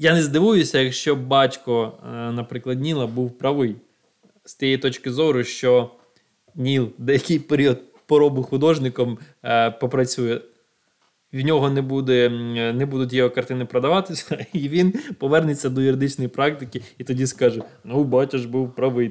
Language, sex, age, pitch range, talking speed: Ukrainian, male, 20-39, 120-145 Hz, 135 wpm